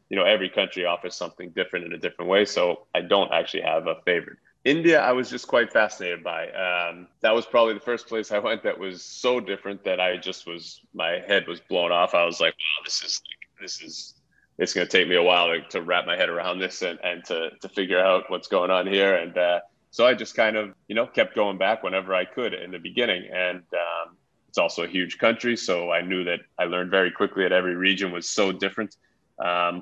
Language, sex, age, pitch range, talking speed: English, male, 20-39, 90-110 Hz, 240 wpm